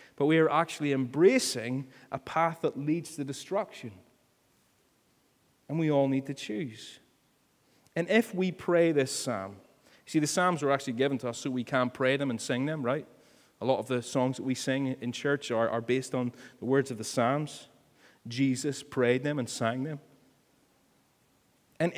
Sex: male